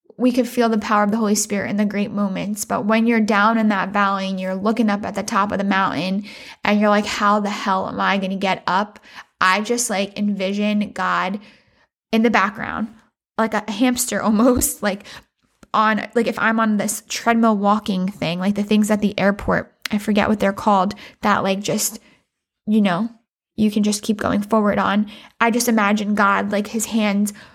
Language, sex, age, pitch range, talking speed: English, female, 10-29, 200-225 Hz, 205 wpm